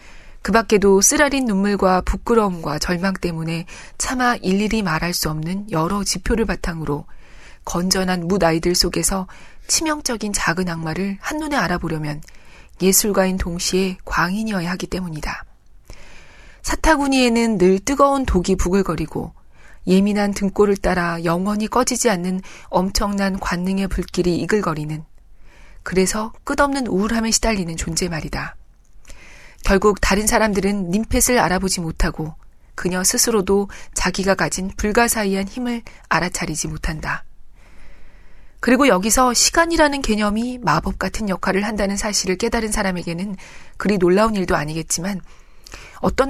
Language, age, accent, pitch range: Korean, 40-59, native, 175-220 Hz